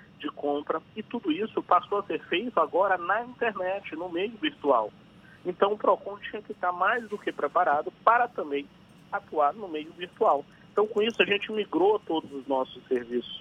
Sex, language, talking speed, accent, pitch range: male, Portuguese, 185 wpm, Brazilian, 140-210 Hz